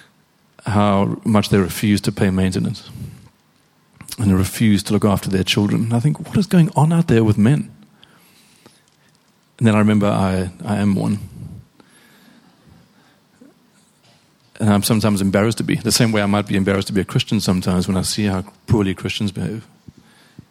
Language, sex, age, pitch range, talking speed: English, male, 40-59, 100-125 Hz, 175 wpm